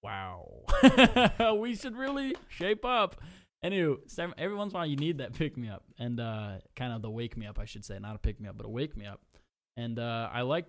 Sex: male